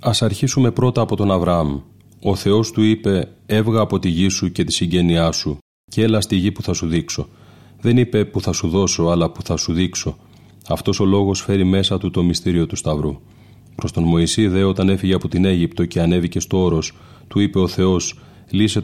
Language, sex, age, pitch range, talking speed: Greek, male, 30-49, 85-100 Hz, 205 wpm